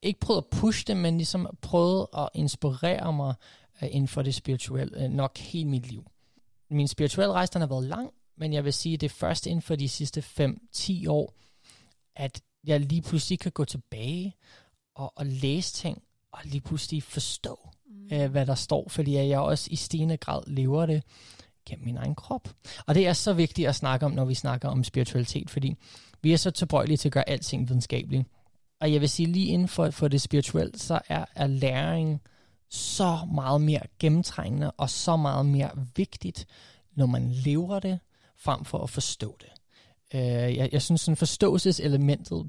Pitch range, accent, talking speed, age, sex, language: 130-160 Hz, native, 190 wpm, 20-39, male, Danish